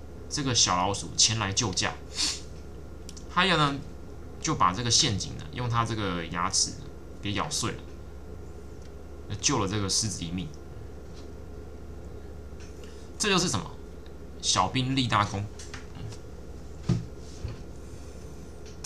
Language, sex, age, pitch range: Chinese, male, 20-39, 80-110 Hz